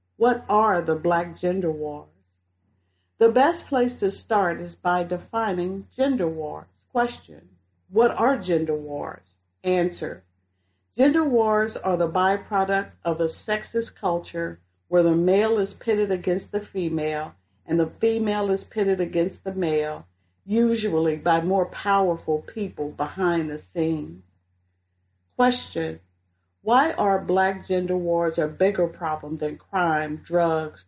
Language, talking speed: English, 130 wpm